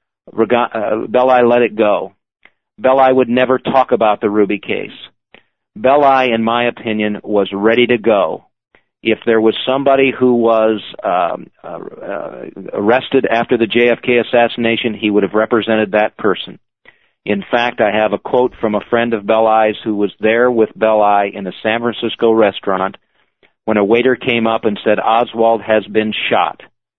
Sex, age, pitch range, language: male, 40-59, 110-120 Hz, English